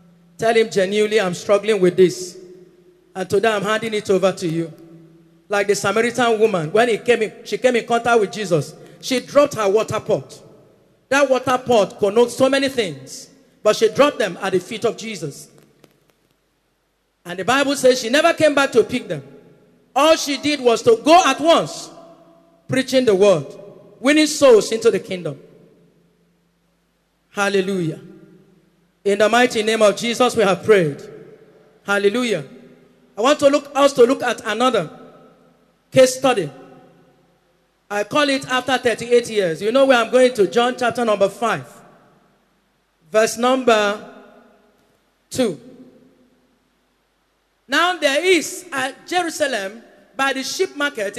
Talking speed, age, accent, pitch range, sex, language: 145 wpm, 40-59, Nigerian, 195-265 Hz, male, English